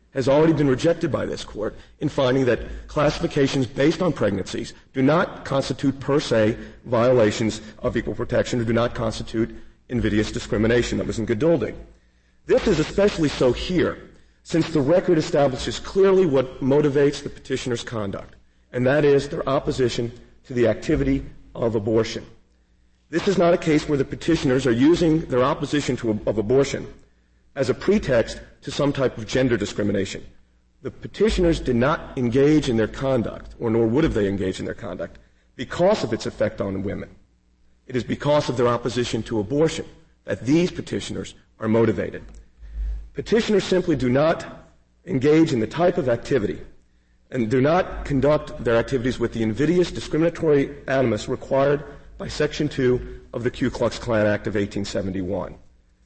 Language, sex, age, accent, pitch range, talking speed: English, male, 40-59, American, 110-145 Hz, 160 wpm